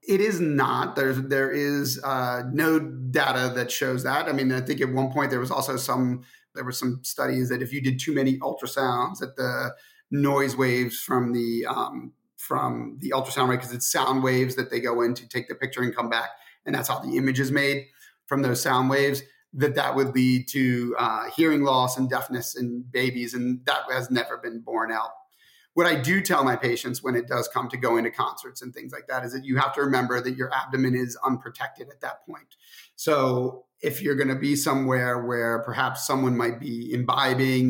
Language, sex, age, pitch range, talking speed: English, male, 30-49, 125-140 Hz, 210 wpm